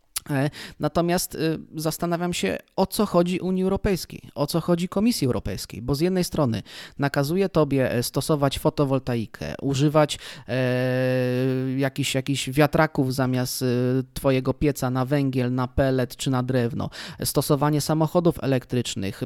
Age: 20-39